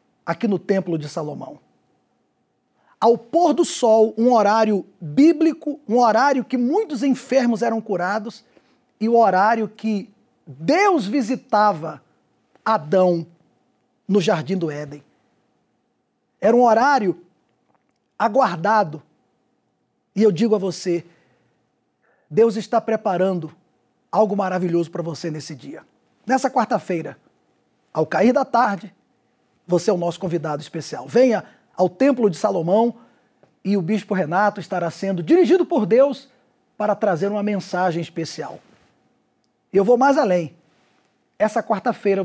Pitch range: 185-245 Hz